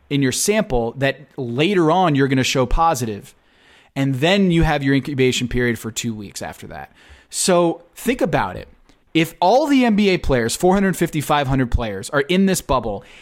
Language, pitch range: English, 125-170 Hz